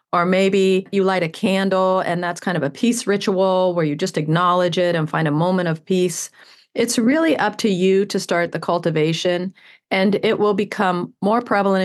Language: English